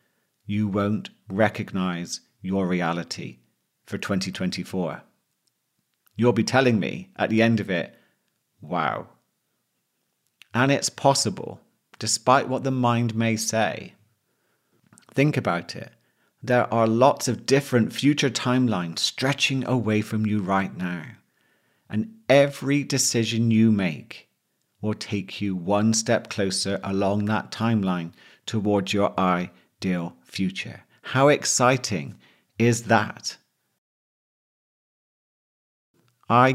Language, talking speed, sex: English, 105 wpm, male